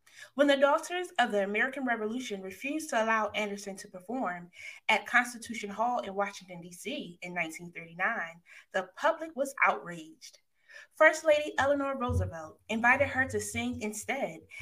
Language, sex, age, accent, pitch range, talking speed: English, female, 20-39, American, 190-280 Hz, 140 wpm